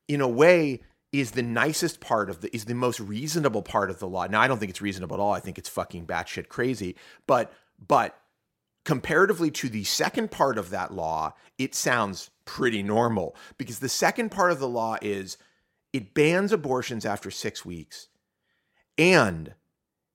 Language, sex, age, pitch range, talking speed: English, male, 30-49, 110-150 Hz, 180 wpm